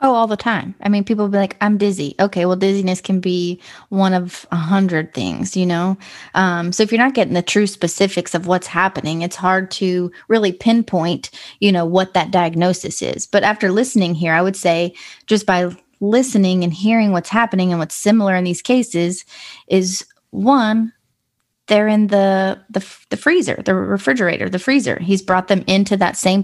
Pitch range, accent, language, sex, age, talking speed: 175-205 Hz, American, English, female, 20-39, 195 wpm